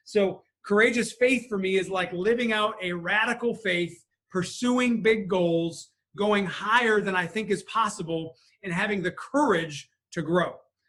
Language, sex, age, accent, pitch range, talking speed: English, male, 30-49, American, 185-230 Hz, 155 wpm